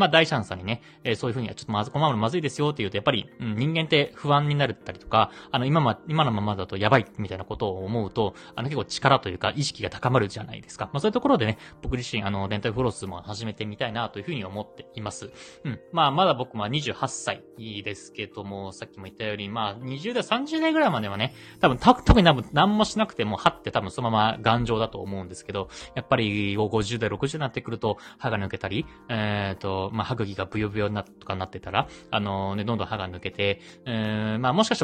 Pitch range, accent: 105-140 Hz, native